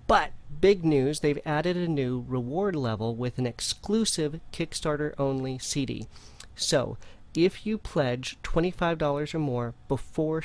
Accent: American